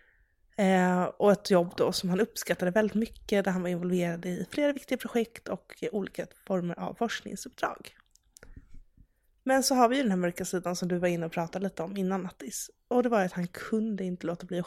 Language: Swedish